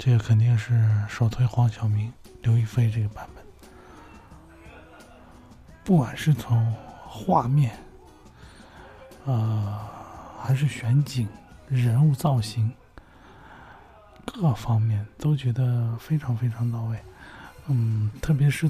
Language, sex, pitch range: Chinese, male, 115-155 Hz